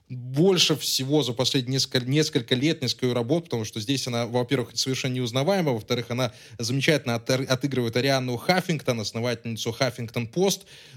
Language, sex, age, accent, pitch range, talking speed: Russian, male, 20-39, native, 125-170 Hz, 130 wpm